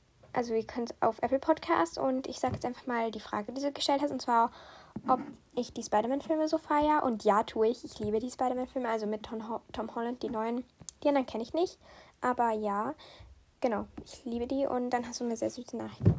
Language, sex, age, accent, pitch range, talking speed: German, female, 10-29, German, 235-290 Hz, 235 wpm